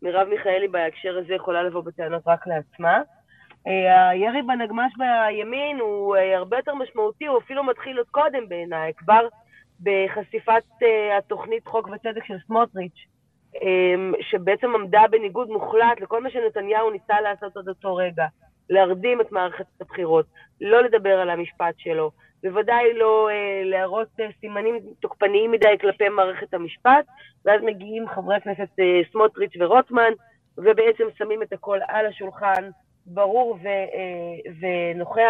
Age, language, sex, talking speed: 20-39, Hebrew, female, 130 wpm